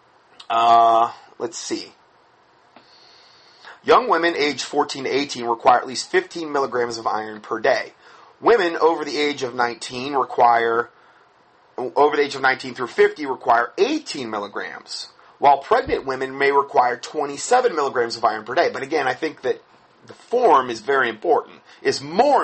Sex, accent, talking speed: male, American, 155 wpm